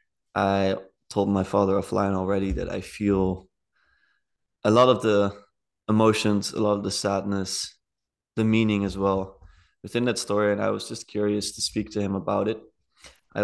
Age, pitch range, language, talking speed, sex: 20-39, 100-110 Hz, English, 170 wpm, male